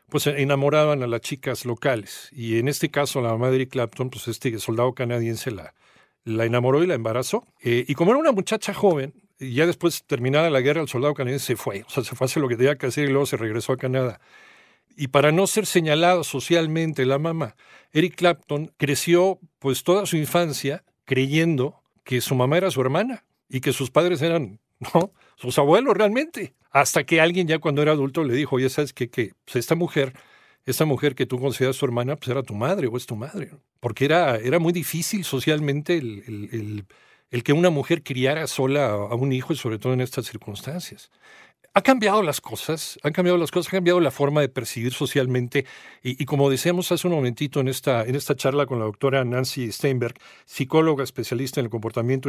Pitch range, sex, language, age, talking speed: 125-160 Hz, male, Spanish, 50-69, 210 wpm